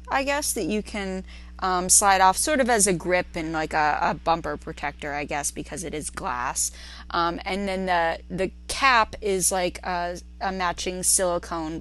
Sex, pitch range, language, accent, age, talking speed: female, 160-200 Hz, English, American, 20-39, 190 wpm